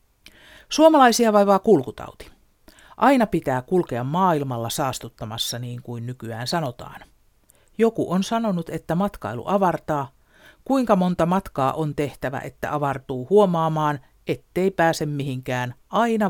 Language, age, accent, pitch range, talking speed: Finnish, 50-69, native, 135-205 Hz, 110 wpm